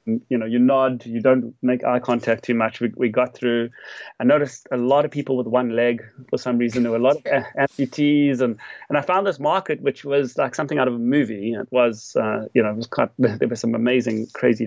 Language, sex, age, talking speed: English, male, 30-49, 245 wpm